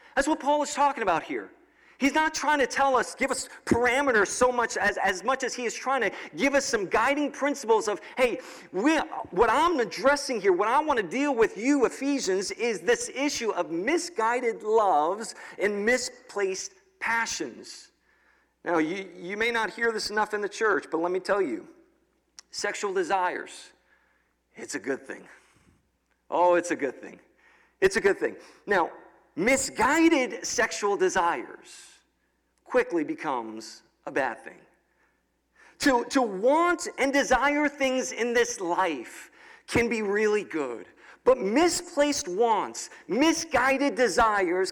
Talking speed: 150 wpm